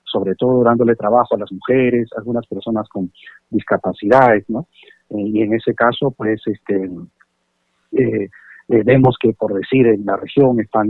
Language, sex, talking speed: Spanish, male, 160 wpm